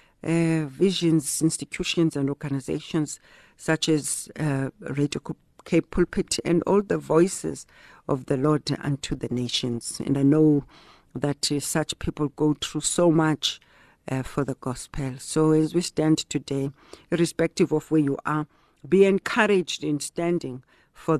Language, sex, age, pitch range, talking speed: English, female, 60-79, 140-170 Hz, 145 wpm